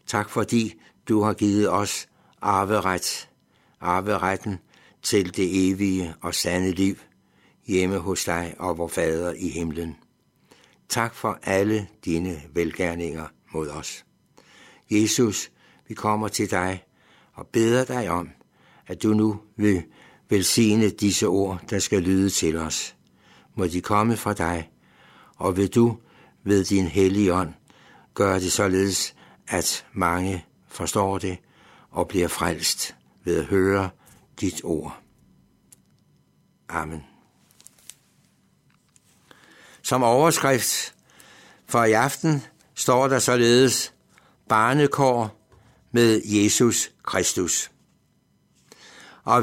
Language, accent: Danish, native